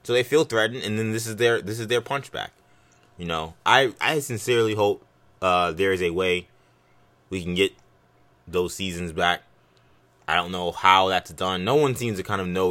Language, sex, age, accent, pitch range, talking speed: English, male, 20-39, American, 90-115 Hz, 205 wpm